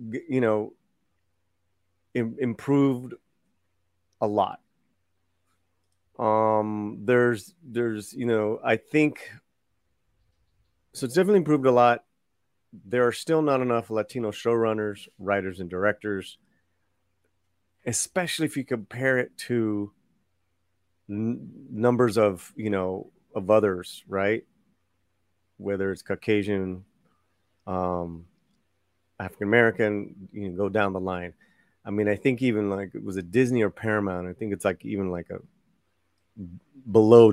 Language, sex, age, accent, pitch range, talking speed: English, male, 30-49, American, 90-120 Hz, 120 wpm